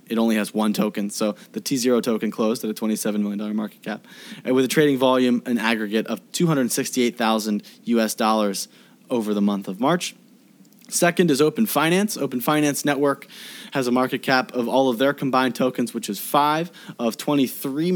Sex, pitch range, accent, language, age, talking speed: male, 110-140 Hz, American, English, 20-39, 180 wpm